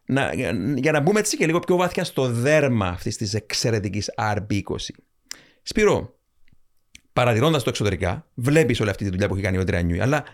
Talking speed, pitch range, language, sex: 170 wpm, 110-160 Hz, Greek, male